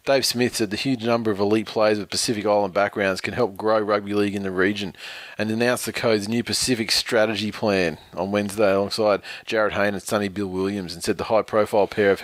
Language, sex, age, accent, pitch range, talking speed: English, male, 30-49, Australian, 100-110 Hz, 215 wpm